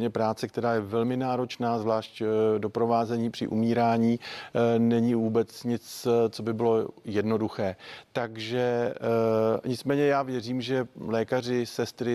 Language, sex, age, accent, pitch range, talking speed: Czech, male, 50-69, native, 110-125 Hz, 115 wpm